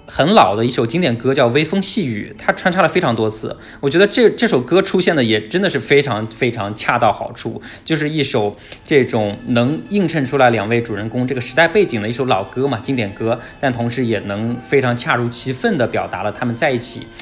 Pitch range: 110-140 Hz